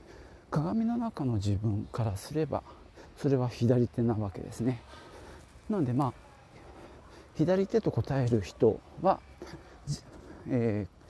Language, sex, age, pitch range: Japanese, male, 40-59, 105-145 Hz